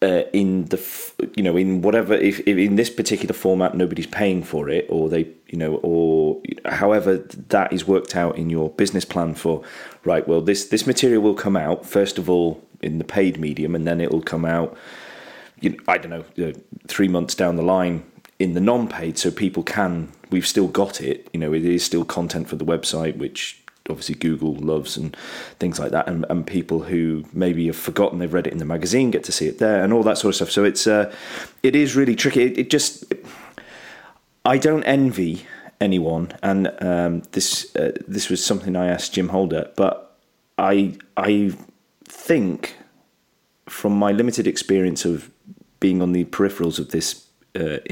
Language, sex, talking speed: English, male, 195 wpm